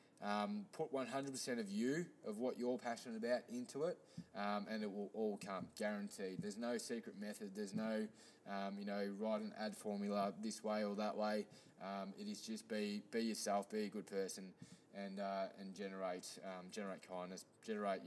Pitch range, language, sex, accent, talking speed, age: 100-135 Hz, English, male, Australian, 185 wpm, 20-39